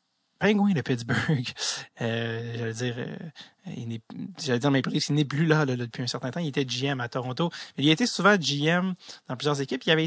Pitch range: 130-160 Hz